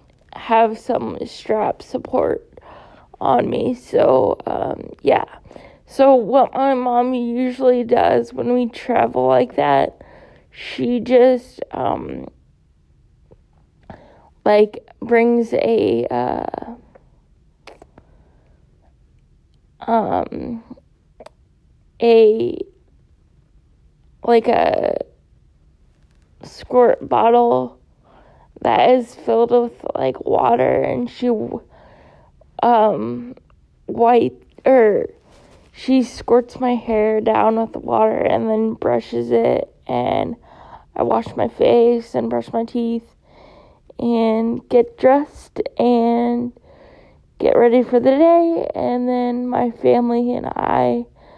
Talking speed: 95 wpm